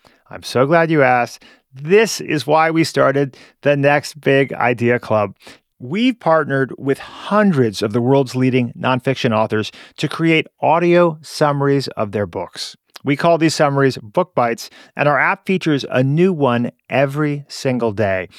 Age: 40-59